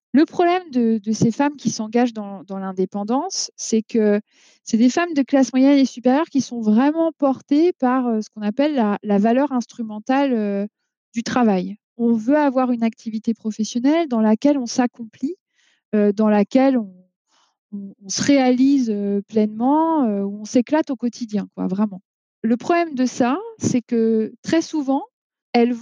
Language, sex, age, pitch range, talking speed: French, female, 20-39, 220-280 Hz, 160 wpm